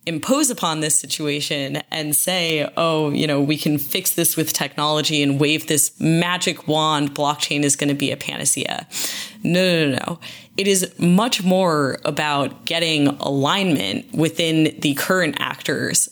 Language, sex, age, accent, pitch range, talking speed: English, female, 20-39, American, 145-180 Hz, 155 wpm